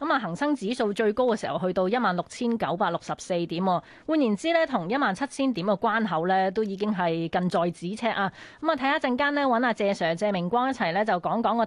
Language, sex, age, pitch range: Chinese, female, 20-39, 175-235 Hz